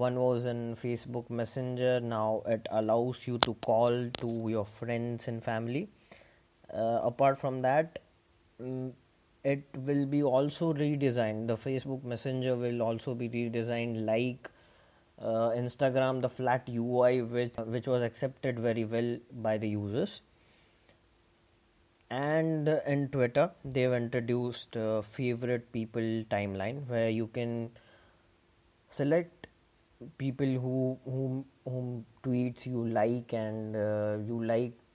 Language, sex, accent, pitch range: English, male, Indian, 115-130 Hz